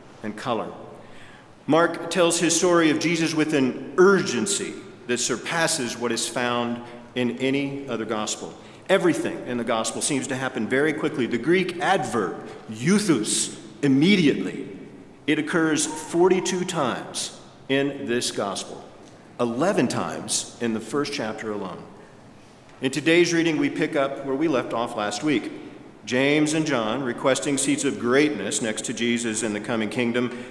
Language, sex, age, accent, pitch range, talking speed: English, male, 50-69, American, 115-160 Hz, 145 wpm